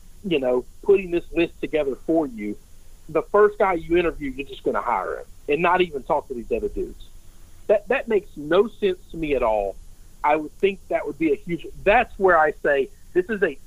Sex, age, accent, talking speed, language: male, 50-69, American, 225 wpm, English